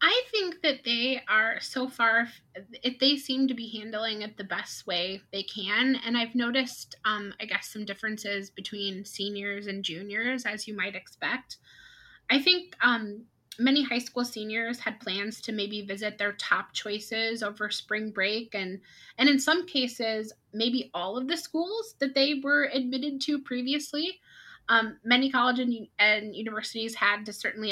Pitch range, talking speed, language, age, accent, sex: 205-250 Hz, 165 wpm, English, 20-39, American, female